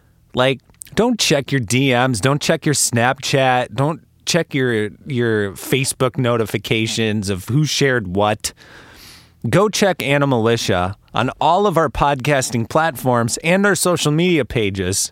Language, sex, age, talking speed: English, male, 30-49, 130 wpm